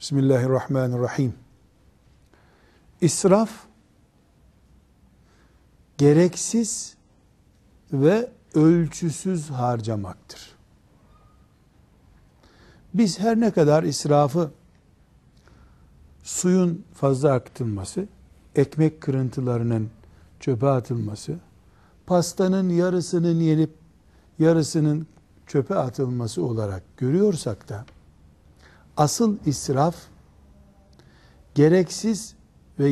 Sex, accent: male, native